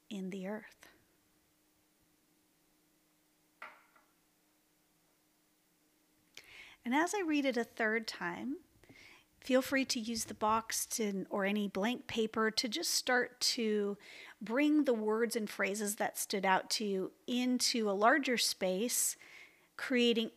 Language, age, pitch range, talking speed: English, 40-59, 190-245 Hz, 120 wpm